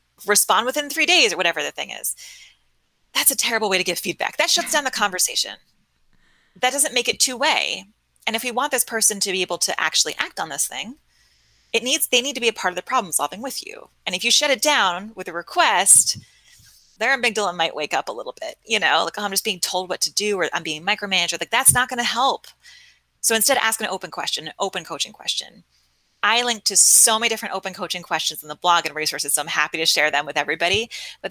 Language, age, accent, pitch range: English, 30-49, American, 180-255 Hz